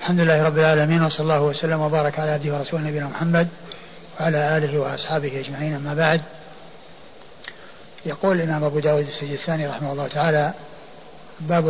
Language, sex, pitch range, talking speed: Arabic, male, 160-180 Hz, 150 wpm